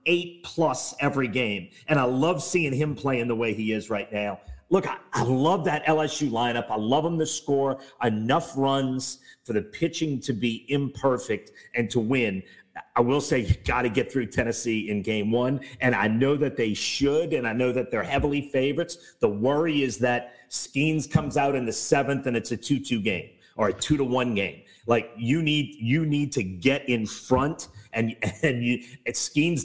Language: English